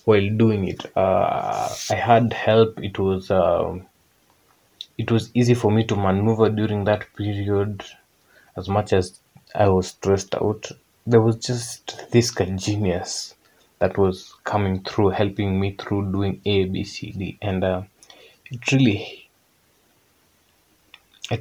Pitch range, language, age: 95-115 Hz, Swahili, 20-39